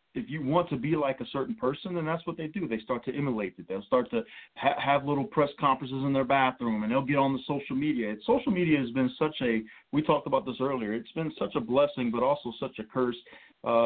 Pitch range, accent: 125-180 Hz, American